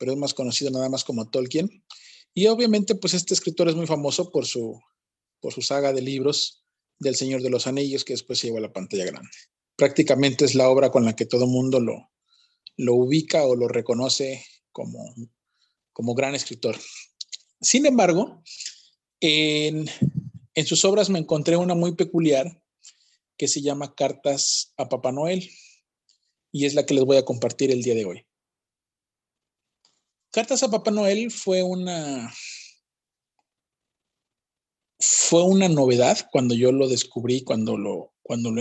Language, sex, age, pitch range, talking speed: Spanish, male, 40-59, 130-175 Hz, 155 wpm